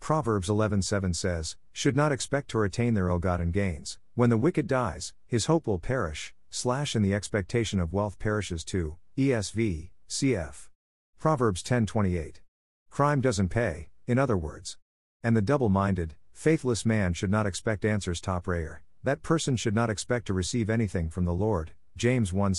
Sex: male